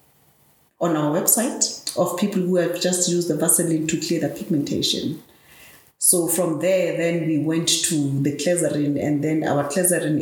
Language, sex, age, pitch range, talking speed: English, female, 40-59, 150-175 Hz, 165 wpm